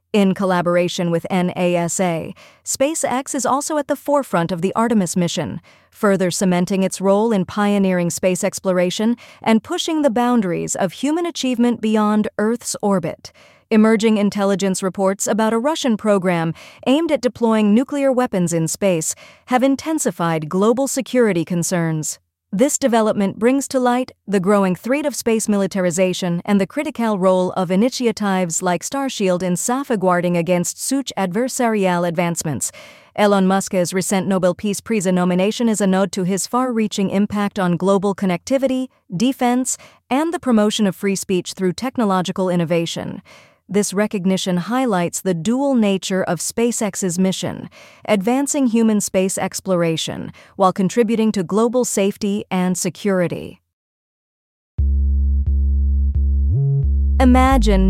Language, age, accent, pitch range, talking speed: English, 40-59, American, 180-235 Hz, 130 wpm